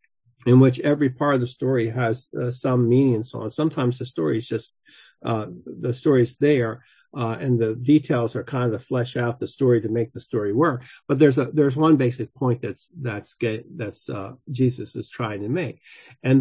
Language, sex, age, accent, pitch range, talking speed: English, male, 50-69, American, 115-140 Hz, 210 wpm